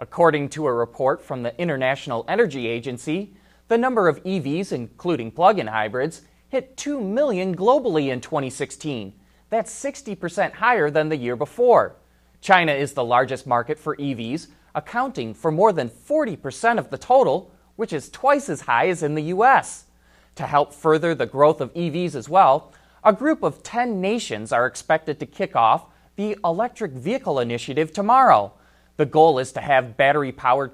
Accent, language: American, English